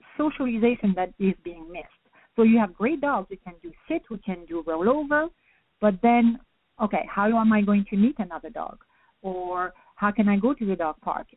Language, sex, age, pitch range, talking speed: English, female, 50-69, 190-230 Hz, 205 wpm